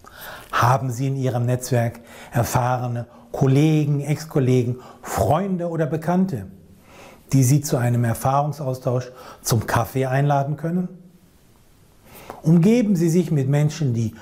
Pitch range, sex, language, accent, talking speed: 120-160 Hz, male, German, German, 110 wpm